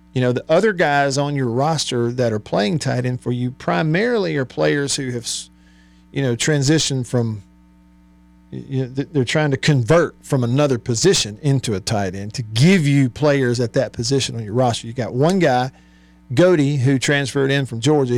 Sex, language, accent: male, English, American